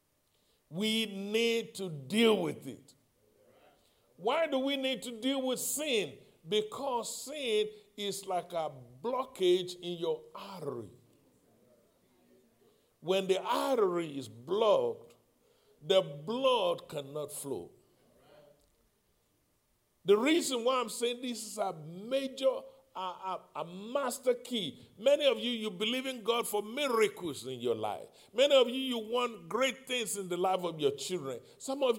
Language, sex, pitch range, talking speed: English, male, 190-270 Hz, 135 wpm